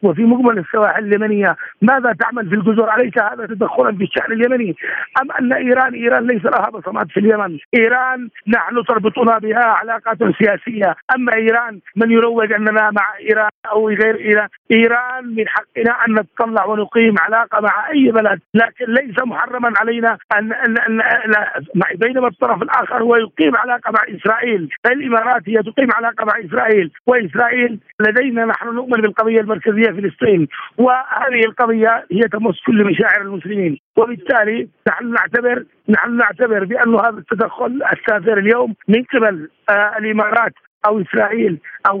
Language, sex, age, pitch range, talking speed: Arabic, male, 50-69, 210-235 Hz, 145 wpm